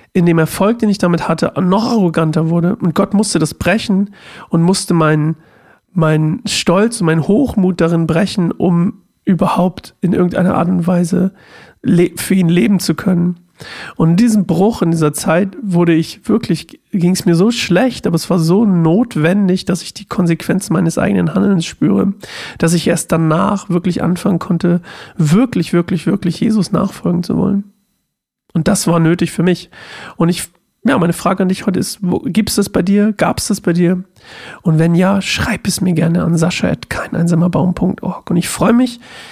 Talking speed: 180 wpm